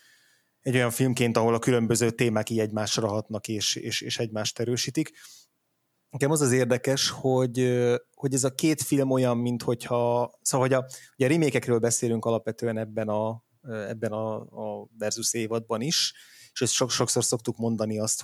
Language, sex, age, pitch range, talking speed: Hungarian, male, 20-39, 115-125 Hz, 160 wpm